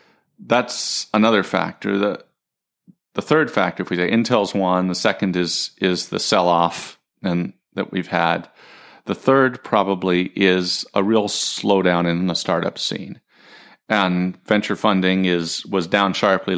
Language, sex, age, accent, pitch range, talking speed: English, male, 40-59, American, 90-110 Hz, 150 wpm